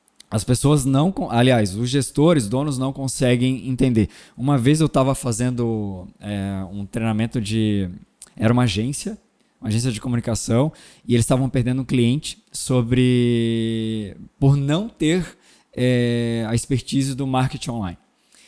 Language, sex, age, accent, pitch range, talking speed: Portuguese, male, 20-39, Brazilian, 115-145 Hz, 125 wpm